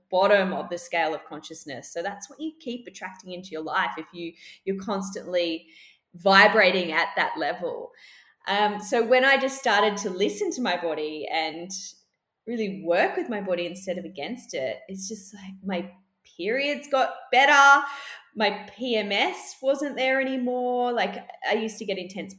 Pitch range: 185-275 Hz